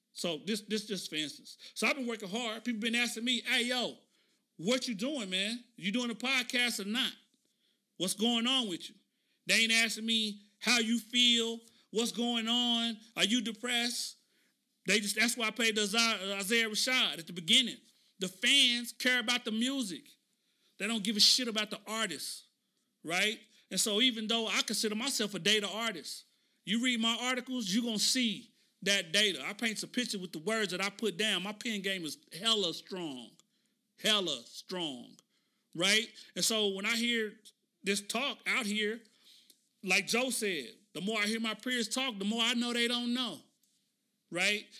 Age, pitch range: 40-59, 205-245 Hz